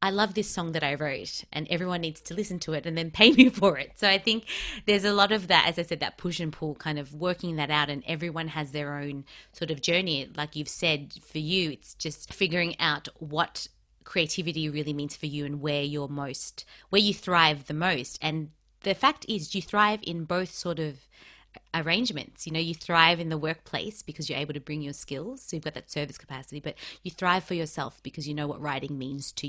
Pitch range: 145-175 Hz